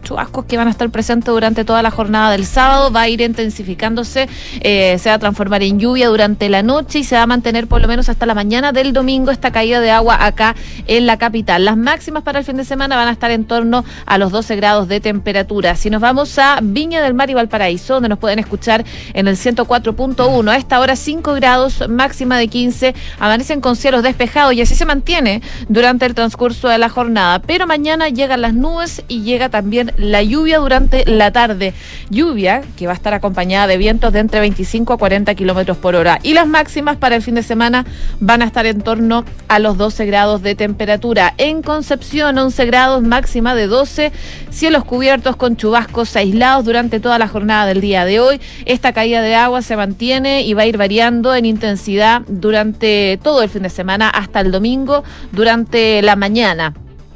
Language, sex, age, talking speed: Spanish, female, 30-49, 205 wpm